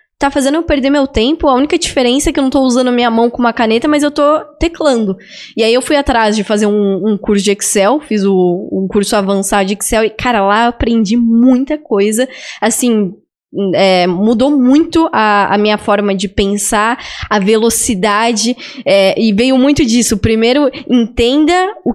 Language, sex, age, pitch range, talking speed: Portuguese, female, 10-29, 210-280 Hz, 195 wpm